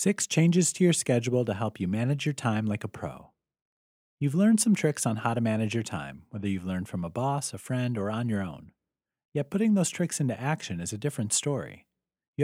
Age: 30-49